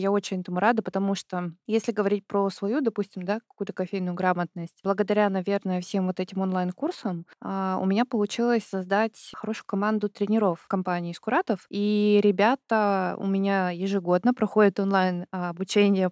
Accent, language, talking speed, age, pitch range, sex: native, Russian, 140 wpm, 20-39, 185-215 Hz, female